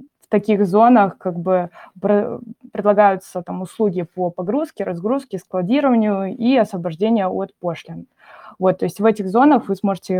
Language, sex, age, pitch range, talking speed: Russian, female, 20-39, 180-210 Hz, 140 wpm